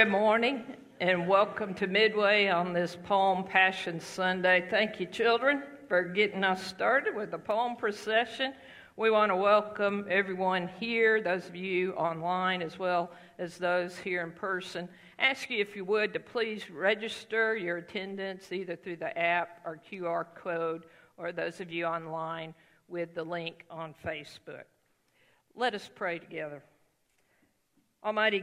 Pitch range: 170-205 Hz